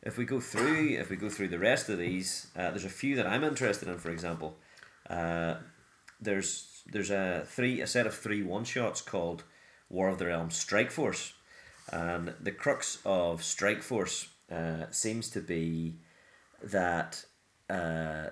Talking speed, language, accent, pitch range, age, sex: 170 wpm, English, British, 85-100 Hz, 30-49, male